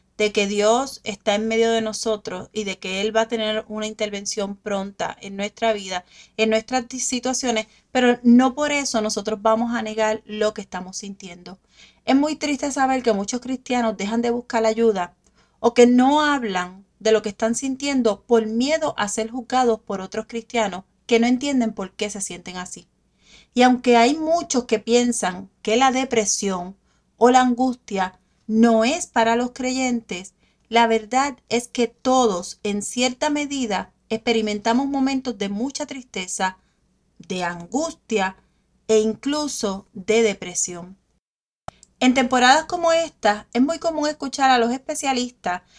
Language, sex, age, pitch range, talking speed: Spanish, female, 30-49, 205-255 Hz, 155 wpm